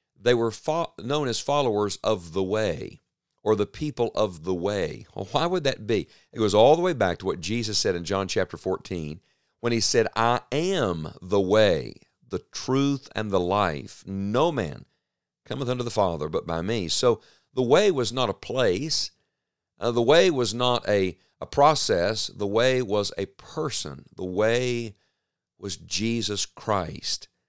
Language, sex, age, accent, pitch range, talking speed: English, male, 50-69, American, 95-125 Hz, 175 wpm